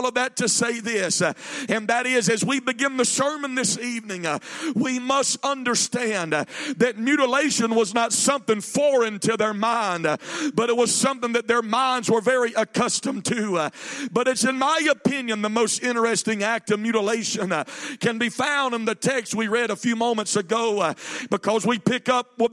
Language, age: English, 50-69